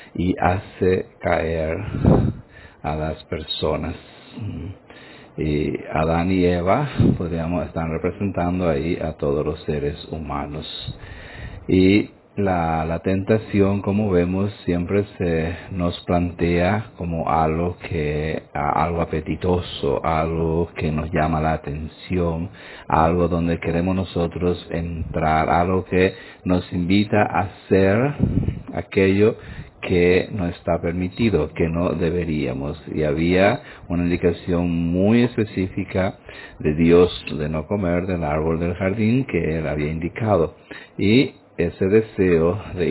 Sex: male